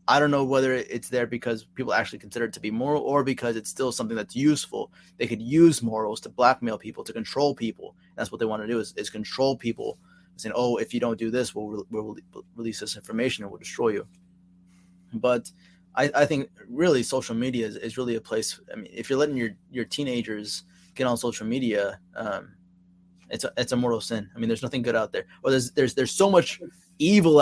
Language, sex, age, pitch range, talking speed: English, male, 20-39, 105-125 Hz, 230 wpm